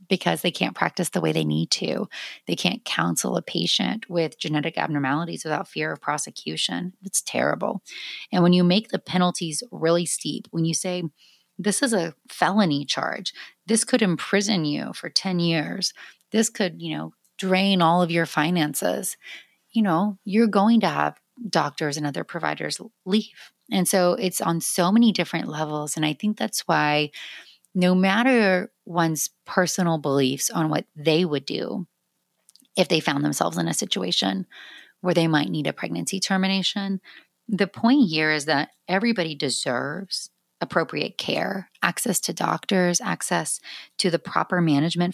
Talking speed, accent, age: 160 wpm, American, 30-49